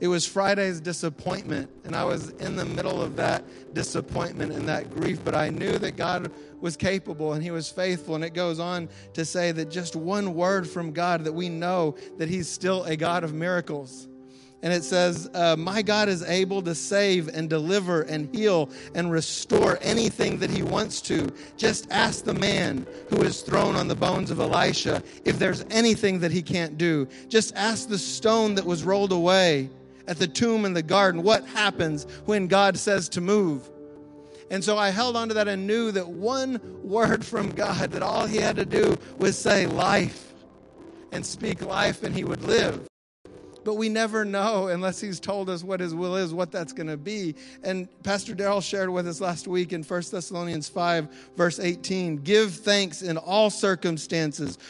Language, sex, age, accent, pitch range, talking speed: English, male, 50-69, American, 160-195 Hz, 195 wpm